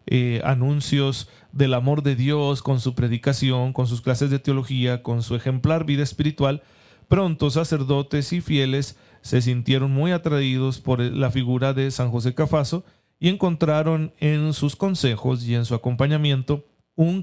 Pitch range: 125-155 Hz